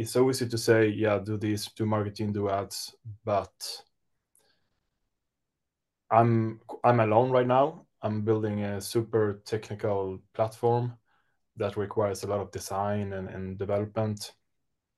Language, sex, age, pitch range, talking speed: English, male, 20-39, 100-120 Hz, 130 wpm